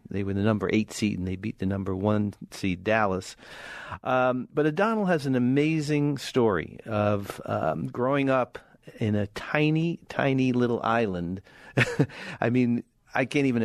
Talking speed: 160 wpm